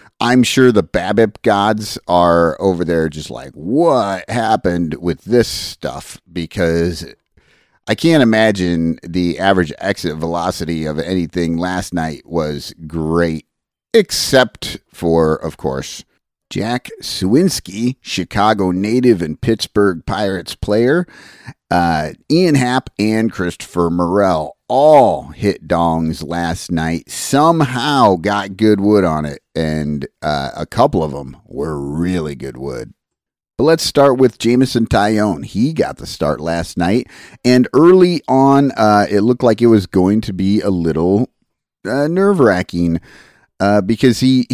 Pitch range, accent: 85-120 Hz, American